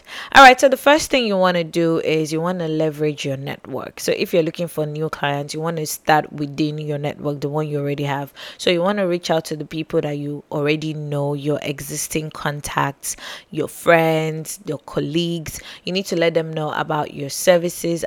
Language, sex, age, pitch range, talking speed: English, female, 20-39, 150-170 Hz, 215 wpm